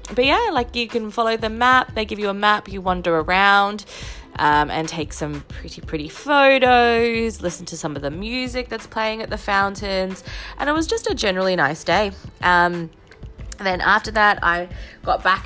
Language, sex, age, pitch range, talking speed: English, female, 20-39, 160-215 Hz, 190 wpm